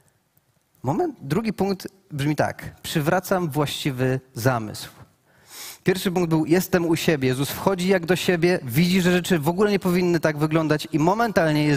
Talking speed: 155 wpm